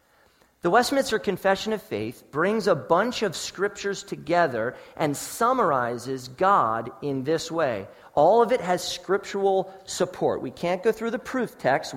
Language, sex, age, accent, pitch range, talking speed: English, male, 40-59, American, 175-215 Hz, 150 wpm